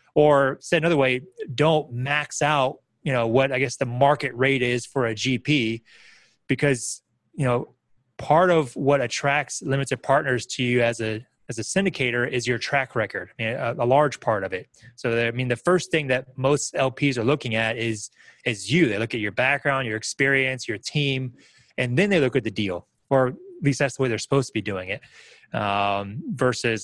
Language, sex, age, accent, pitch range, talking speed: English, male, 20-39, American, 120-140 Hz, 210 wpm